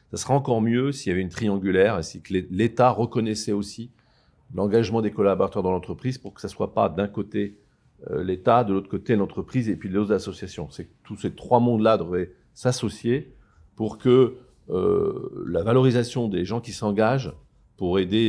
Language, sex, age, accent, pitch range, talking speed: French, male, 50-69, French, 95-120 Hz, 185 wpm